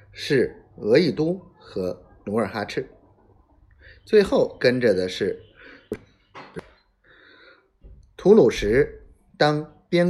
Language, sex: Chinese, male